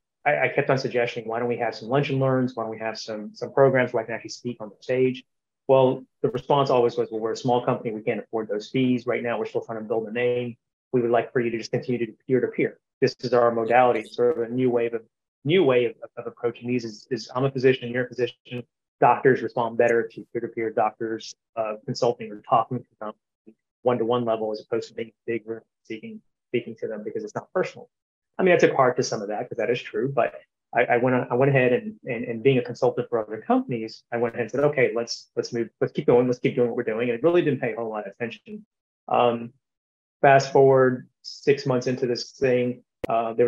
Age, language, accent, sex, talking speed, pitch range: 30-49, English, American, male, 245 wpm, 115-130 Hz